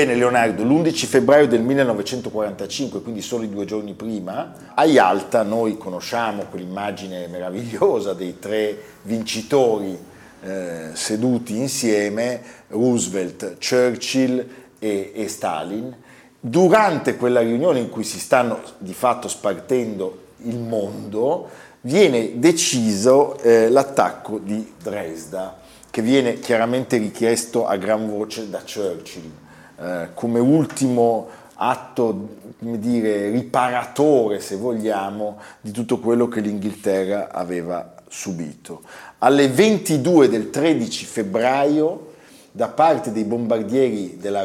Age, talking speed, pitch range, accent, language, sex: 40-59, 110 wpm, 105-130 Hz, native, Italian, male